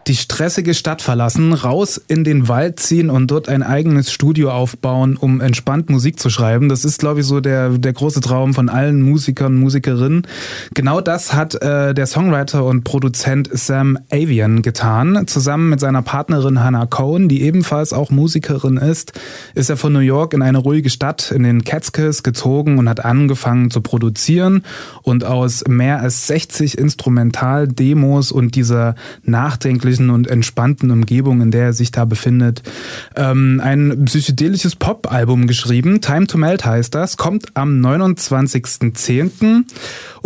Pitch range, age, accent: 125-150 Hz, 20-39, German